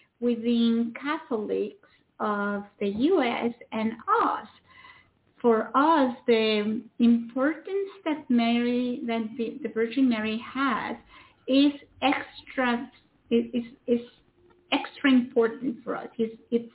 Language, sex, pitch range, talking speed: English, female, 230-295 Hz, 110 wpm